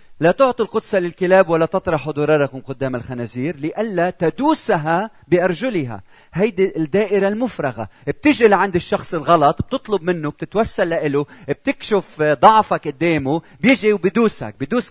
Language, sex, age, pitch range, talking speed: Arabic, male, 40-59, 130-185 Hz, 115 wpm